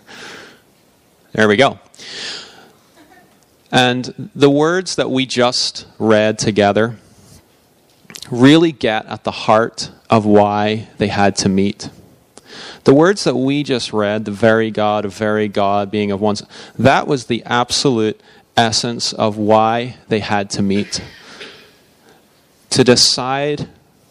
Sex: male